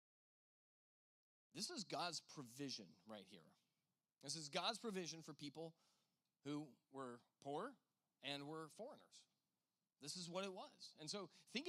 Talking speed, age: 135 wpm, 30-49